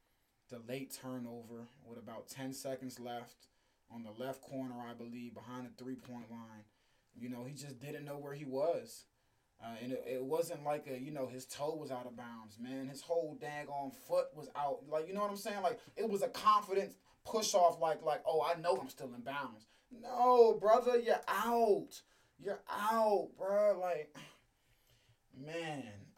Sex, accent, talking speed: male, American, 185 wpm